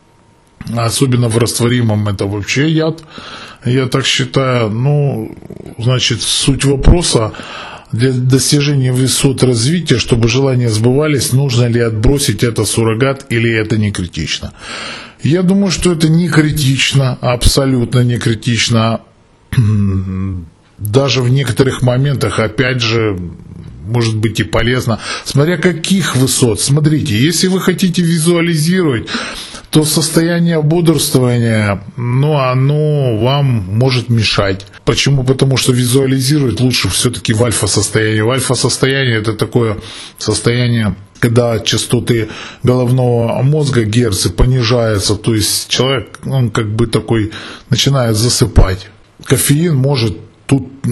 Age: 20-39